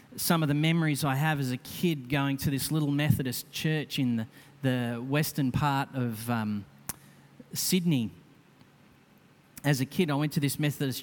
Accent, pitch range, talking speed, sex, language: Australian, 140-170 Hz, 170 wpm, male, English